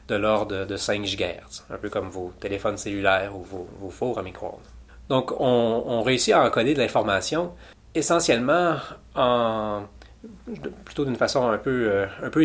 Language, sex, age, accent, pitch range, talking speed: French, male, 30-49, Canadian, 105-130 Hz, 160 wpm